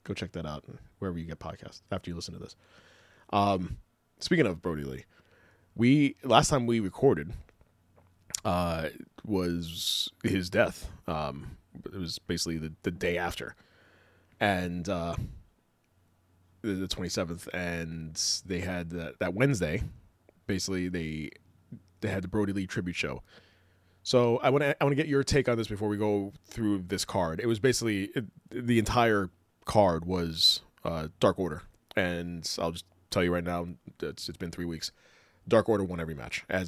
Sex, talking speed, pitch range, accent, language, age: male, 165 wpm, 85-105 Hz, American, English, 20-39